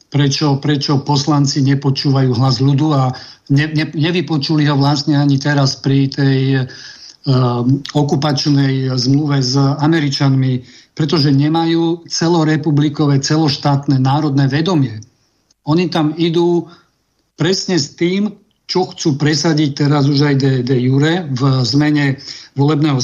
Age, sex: 50-69, male